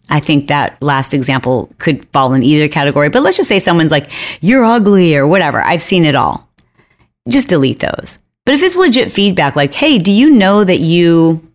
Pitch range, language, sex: 145-185 Hz, English, female